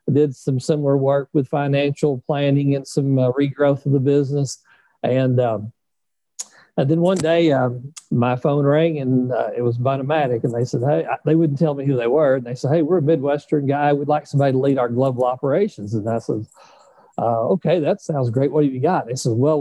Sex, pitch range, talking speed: male, 125-150 Hz, 225 wpm